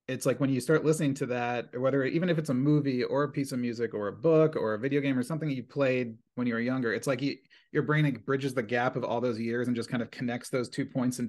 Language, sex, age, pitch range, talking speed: English, male, 30-49, 115-140 Hz, 305 wpm